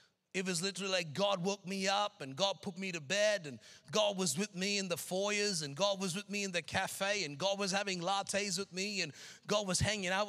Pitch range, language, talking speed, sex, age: 190-225 Hz, English, 245 wpm, male, 30-49